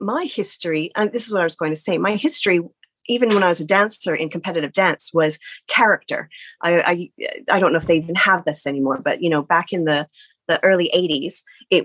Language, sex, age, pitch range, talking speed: English, female, 30-49, 170-230 Hz, 230 wpm